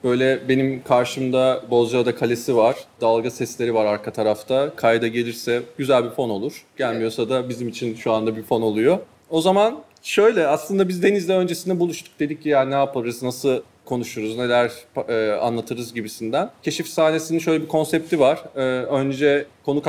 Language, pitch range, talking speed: Turkish, 125-160 Hz, 165 wpm